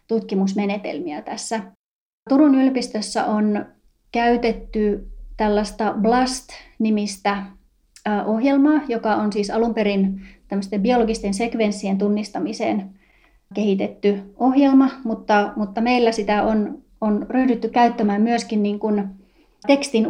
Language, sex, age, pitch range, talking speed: Finnish, female, 30-49, 210-245 Hz, 95 wpm